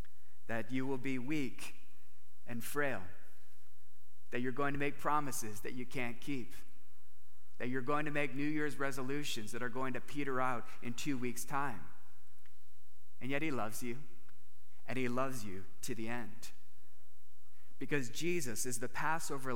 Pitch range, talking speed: 95-140 Hz, 160 wpm